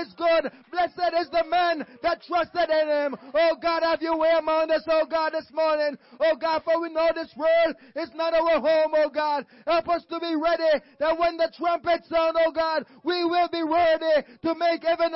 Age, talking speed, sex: 20-39, 210 wpm, male